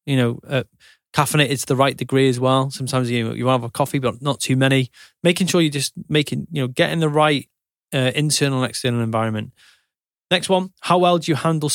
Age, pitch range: 20-39, 125-155 Hz